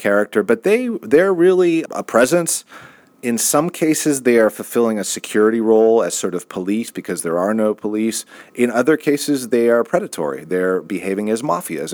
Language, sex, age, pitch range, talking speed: English, male, 30-49, 90-120 Hz, 175 wpm